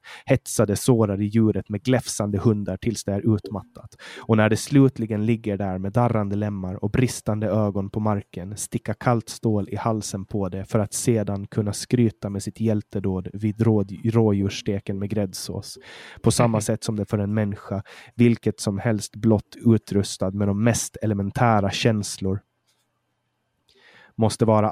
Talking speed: 155 wpm